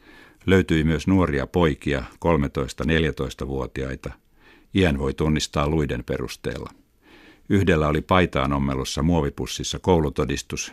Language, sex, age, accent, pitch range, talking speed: Finnish, male, 60-79, native, 65-85 Hz, 85 wpm